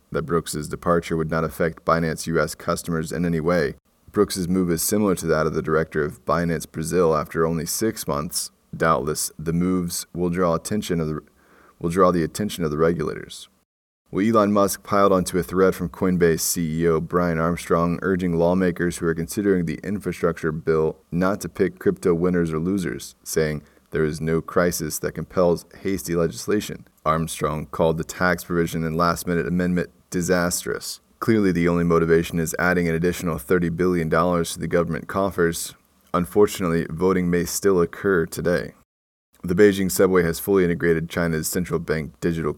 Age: 20-39